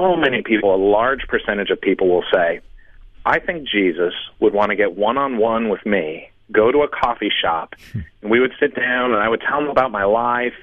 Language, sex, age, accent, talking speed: English, male, 40-59, American, 210 wpm